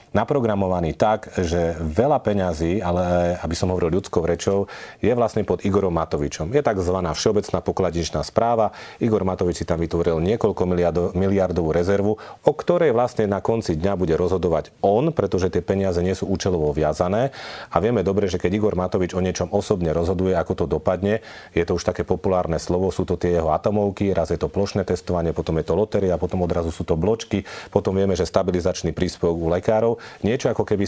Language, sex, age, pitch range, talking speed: Slovak, male, 40-59, 85-100 Hz, 185 wpm